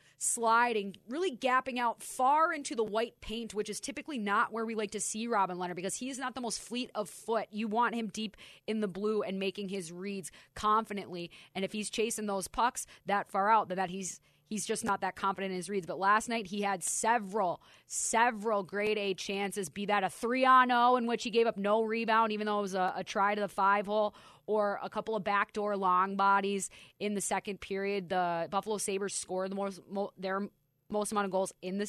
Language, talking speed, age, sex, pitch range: English, 220 wpm, 20-39, female, 195-225 Hz